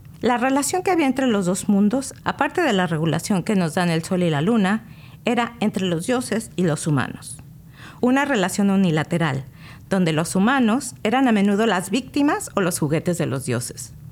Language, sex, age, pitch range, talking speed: English, female, 50-69, 160-230 Hz, 185 wpm